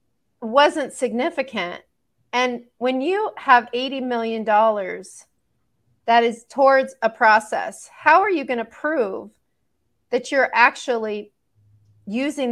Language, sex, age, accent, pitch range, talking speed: English, female, 40-59, American, 205-255 Hz, 110 wpm